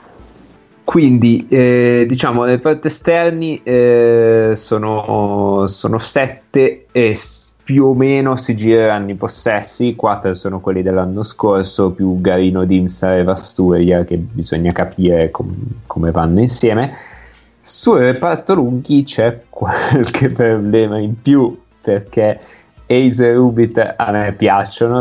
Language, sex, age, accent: Italian, male, 30-49, native